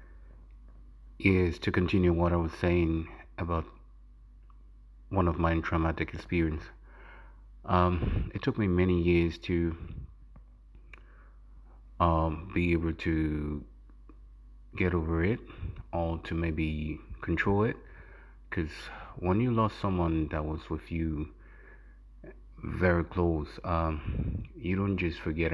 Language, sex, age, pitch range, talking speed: English, male, 30-49, 75-85 Hz, 115 wpm